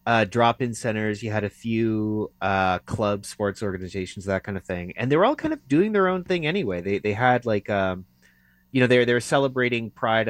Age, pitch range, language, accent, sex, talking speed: 30-49, 95-125 Hz, English, American, male, 220 wpm